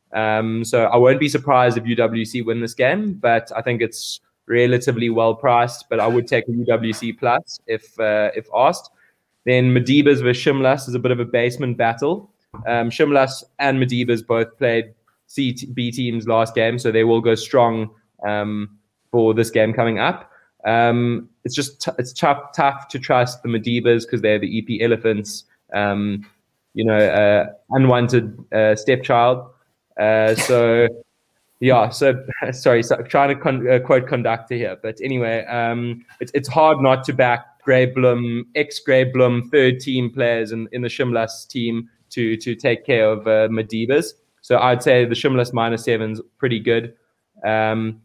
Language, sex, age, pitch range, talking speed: English, male, 20-39, 115-130 Hz, 170 wpm